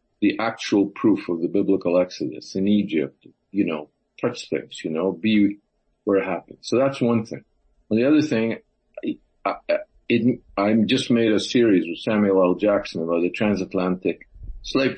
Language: English